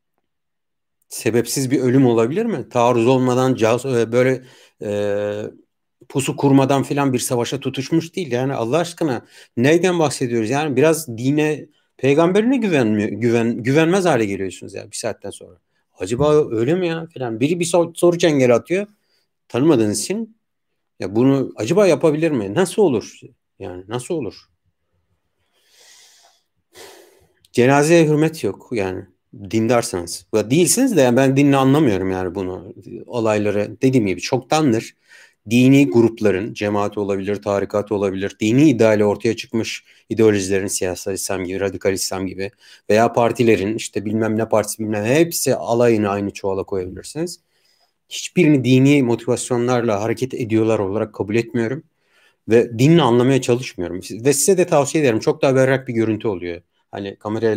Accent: native